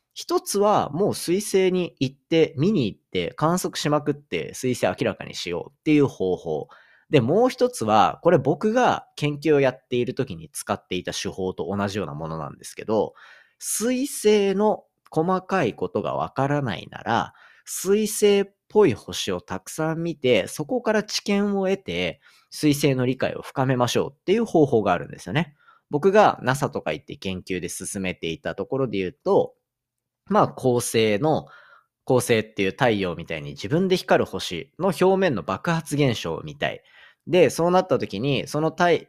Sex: male